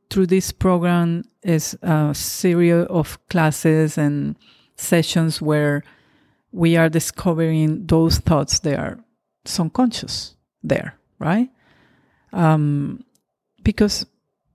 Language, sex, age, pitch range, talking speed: English, female, 50-69, 155-195 Hz, 95 wpm